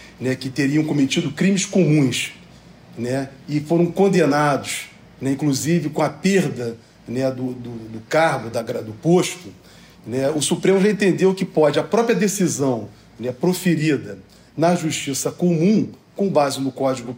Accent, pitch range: Brazilian, 140-190 Hz